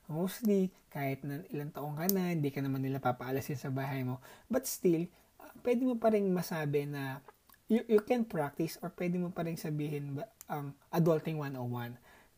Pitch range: 140-175 Hz